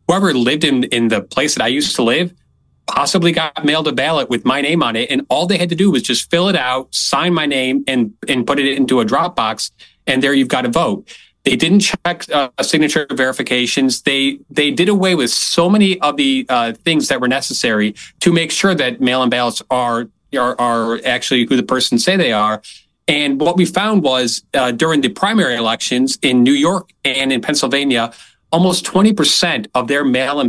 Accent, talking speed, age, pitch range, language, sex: American, 210 wpm, 30-49, 120-170 Hz, English, male